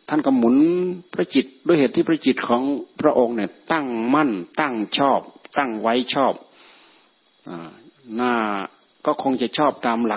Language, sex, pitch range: Thai, male, 110-140 Hz